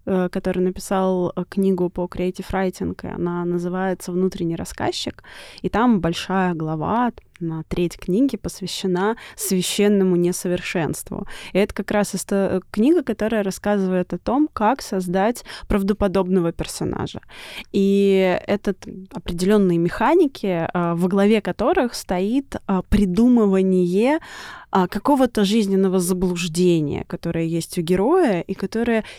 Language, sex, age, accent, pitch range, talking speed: Russian, female, 20-39, native, 175-210 Hz, 105 wpm